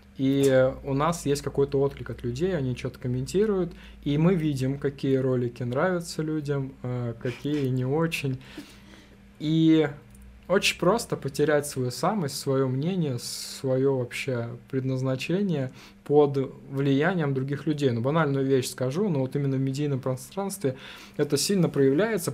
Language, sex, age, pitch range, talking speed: Russian, male, 20-39, 130-155 Hz, 135 wpm